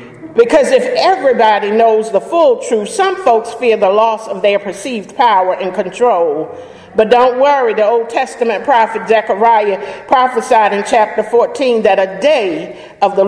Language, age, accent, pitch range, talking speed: English, 50-69, American, 195-245 Hz, 160 wpm